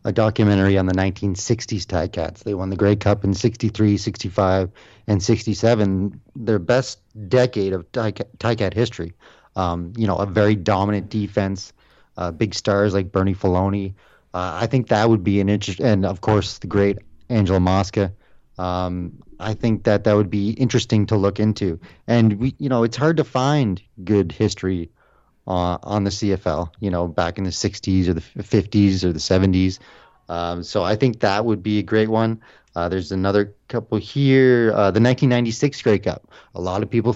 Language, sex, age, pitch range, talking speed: English, male, 30-49, 95-110 Hz, 180 wpm